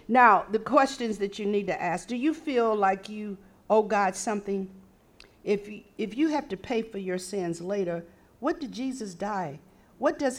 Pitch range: 170-215 Hz